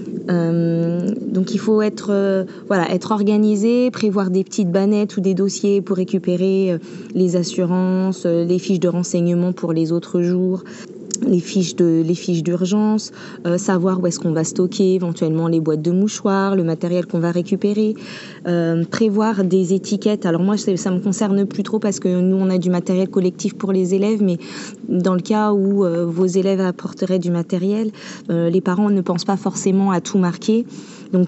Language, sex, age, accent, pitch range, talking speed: French, female, 20-39, French, 175-205 Hz, 180 wpm